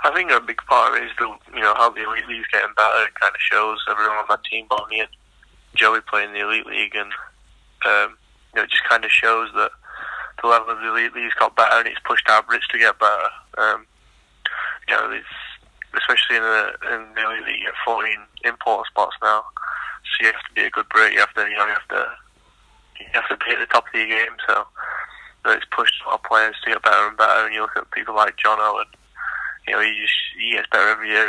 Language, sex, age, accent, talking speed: English, male, 20-39, British, 255 wpm